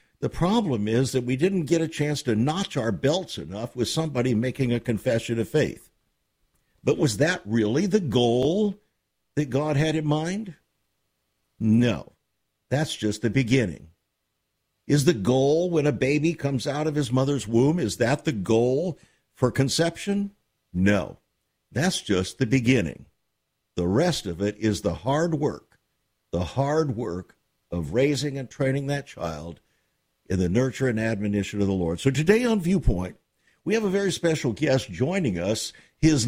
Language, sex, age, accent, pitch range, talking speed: English, male, 50-69, American, 115-155 Hz, 160 wpm